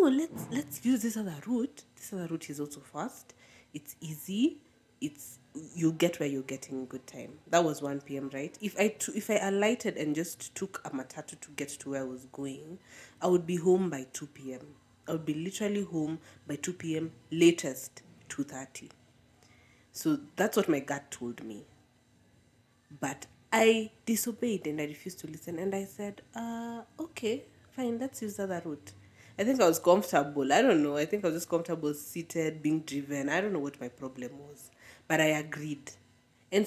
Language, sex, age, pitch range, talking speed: English, female, 30-49, 135-195 Hz, 190 wpm